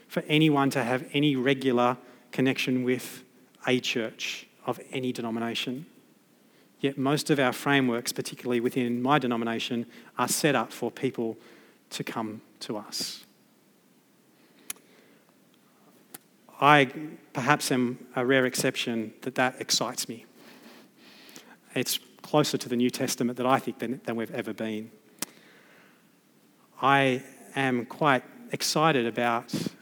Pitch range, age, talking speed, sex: 115-130 Hz, 30-49, 120 wpm, male